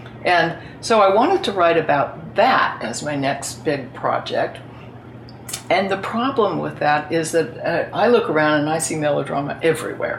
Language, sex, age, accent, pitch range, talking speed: English, female, 60-79, American, 130-165 Hz, 170 wpm